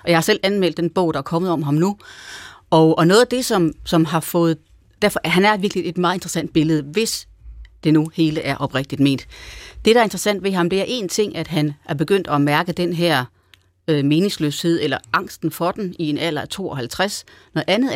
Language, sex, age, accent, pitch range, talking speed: Danish, female, 30-49, native, 150-185 Hz, 215 wpm